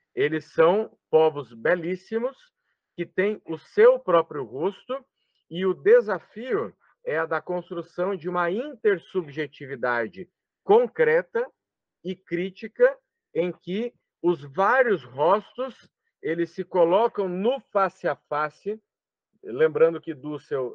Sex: male